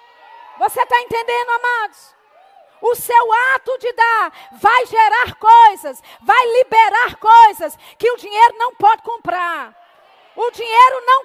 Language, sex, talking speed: Portuguese, female, 130 wpm